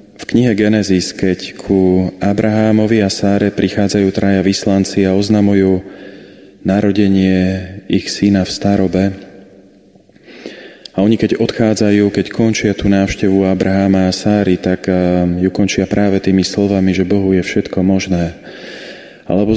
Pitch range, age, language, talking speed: 95-105 Hz, 30-49, Slovak, 125 wpm